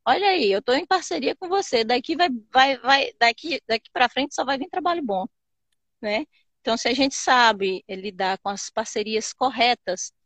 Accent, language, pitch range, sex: Brazilian, Portuguese, 200-245 Hz, female